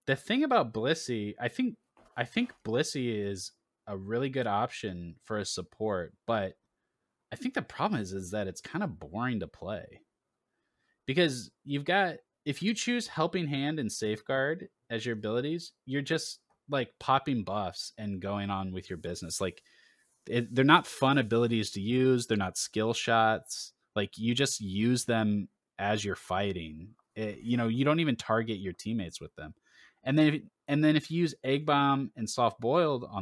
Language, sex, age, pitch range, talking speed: English, male, 20-39, 95-130 Hz, 180 wpm